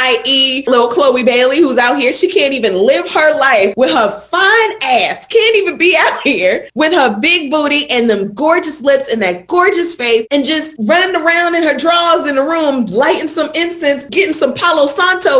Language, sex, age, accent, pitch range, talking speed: English, female, 20-39, American, 200-305 Hz, 200 wpm